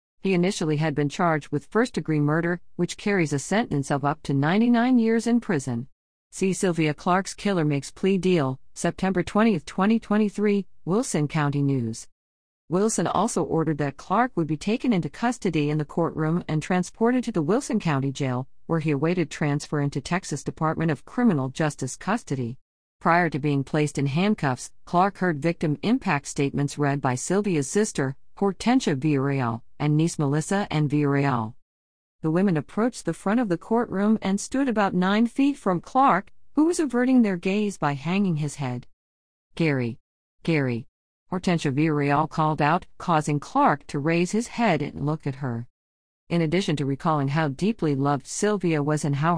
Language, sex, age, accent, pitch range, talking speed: English, female, 50-69, American, 140-195 Hz, 165 wpm